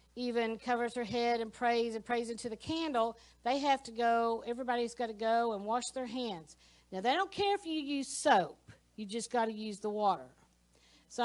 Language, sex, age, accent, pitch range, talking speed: English, female, 50-69, American, 230-280 Hz, 210 wpm